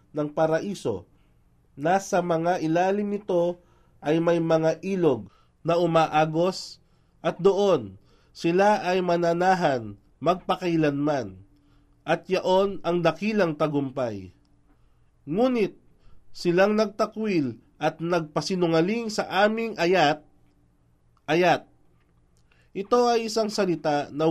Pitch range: 150-185 Hz